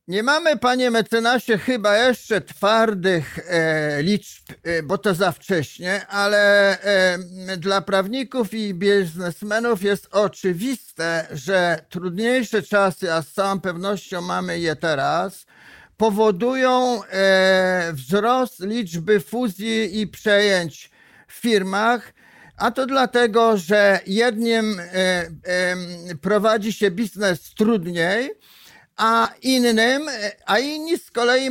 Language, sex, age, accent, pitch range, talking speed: Polish, male, 50-69, native, 185-230 Hz, 100 wpm